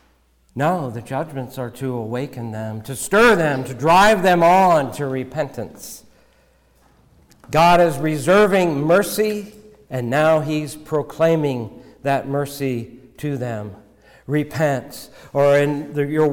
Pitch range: 125-170 Hz